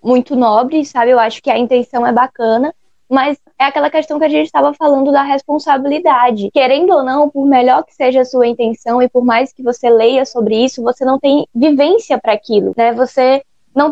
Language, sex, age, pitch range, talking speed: Portuguese, female, 10-29, 235-295 Hz, 205 wpm